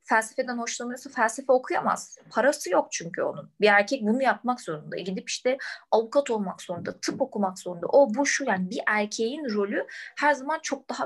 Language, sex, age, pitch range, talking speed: Turkish, female, 20-39, 220-300 Hz, 175 wpm